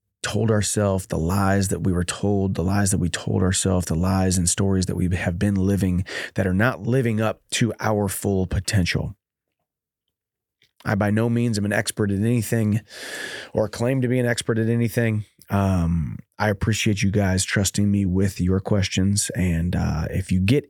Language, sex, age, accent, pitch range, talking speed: English, male, 30-49, American, 95-110 Hz, 185 wpm